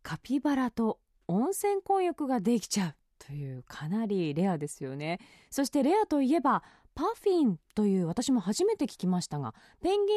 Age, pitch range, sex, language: 20-39, 180-290 Hz, female, Japanese